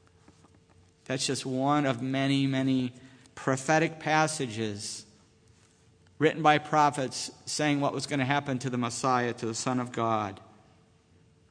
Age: 50-69